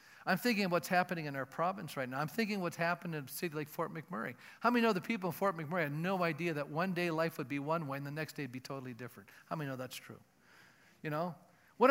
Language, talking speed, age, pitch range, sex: English, 275 wpm, 50-69, 155-210 Hz, male